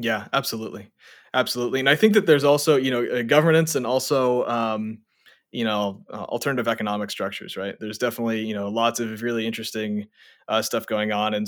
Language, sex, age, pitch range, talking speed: English, male, 20-39, 110-145 Hz, 185 wpm